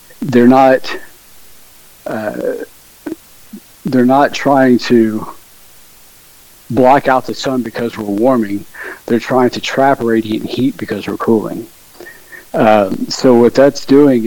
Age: 60-79